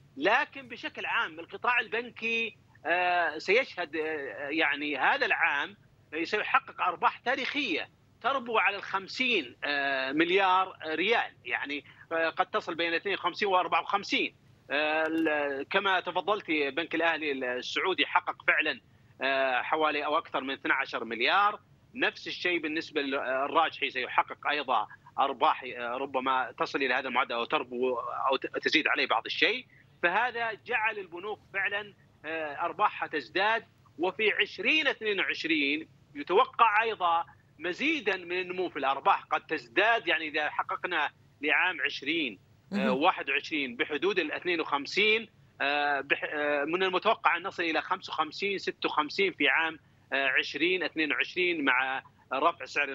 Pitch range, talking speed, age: 150-225 Hz, 110 wpm, 40-59